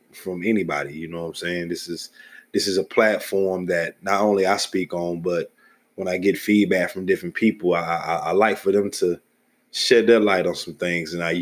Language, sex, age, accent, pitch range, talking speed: English, male, 20-39, American, 85-100 Hz, 220 wpm